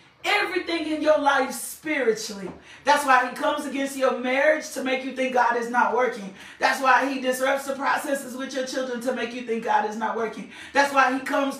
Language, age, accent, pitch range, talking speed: English, 40-59, American, 255-315 Hz, 210 wpm